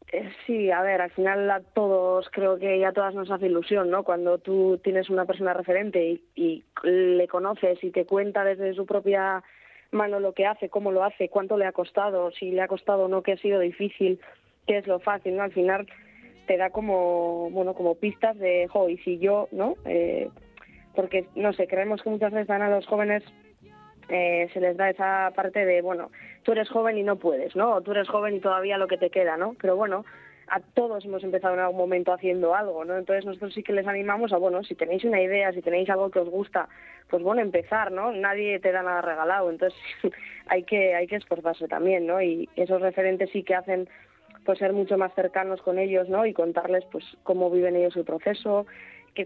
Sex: female